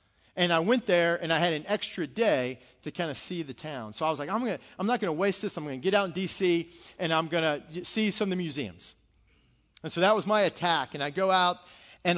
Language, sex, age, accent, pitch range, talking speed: English, male, 40-59, American, 155-205 Hz, 255 wpm